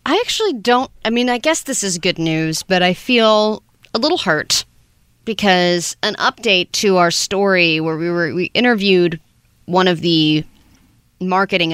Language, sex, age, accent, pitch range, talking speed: English, female, 30-49, American, 170-225 Hz, 165 wpm